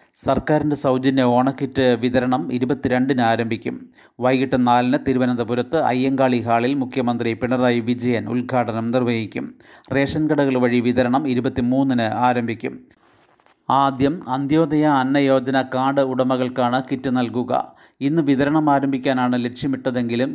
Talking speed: 105 wpm